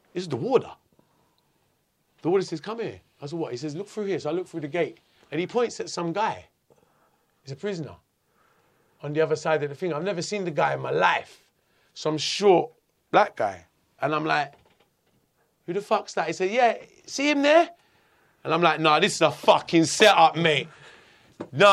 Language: English